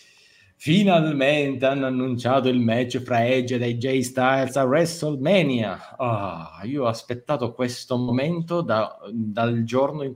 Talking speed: 120 wpm